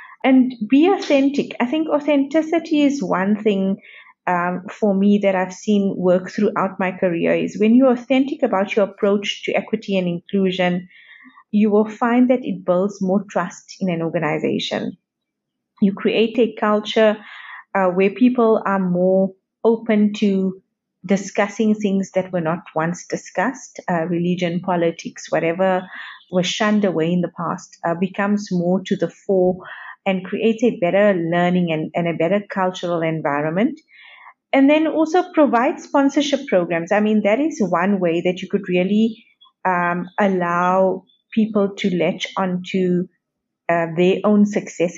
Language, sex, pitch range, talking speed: English, female, 180-215 Hz, 150 wpm